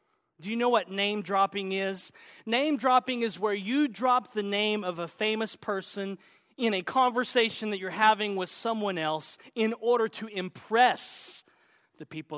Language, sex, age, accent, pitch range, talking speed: English, male, 40-59, American, 170-220 Hz, 155 wpm